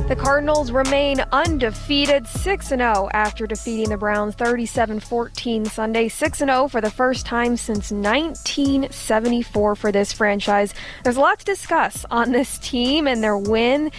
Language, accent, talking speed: English, American, 155 wpm